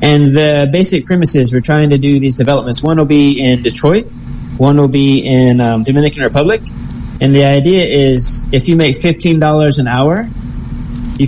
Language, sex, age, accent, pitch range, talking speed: Spanish, male, 20-39, American, 130-155 Hz, 175 wpm